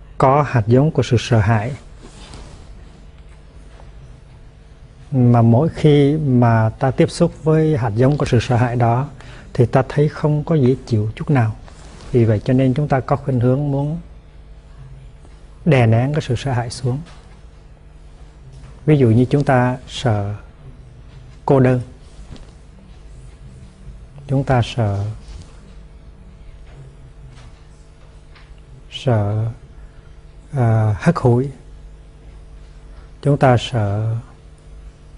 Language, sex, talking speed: Vietnamese, male, 115 wpm